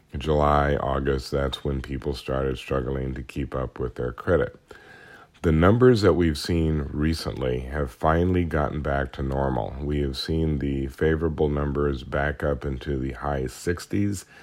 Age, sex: 40-59, male